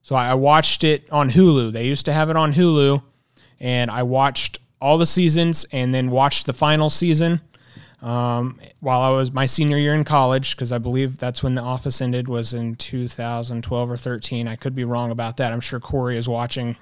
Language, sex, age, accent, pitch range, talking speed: English, male, 30-49, American, 125-150 Hz, 205 wpm